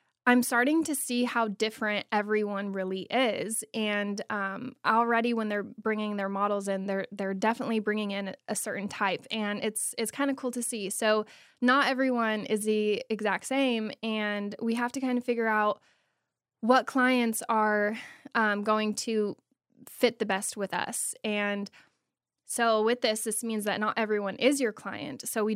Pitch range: 205-240 Hz